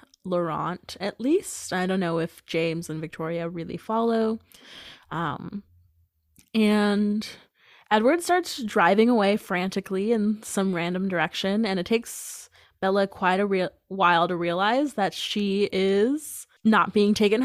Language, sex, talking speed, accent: English, female, 135 wpm, American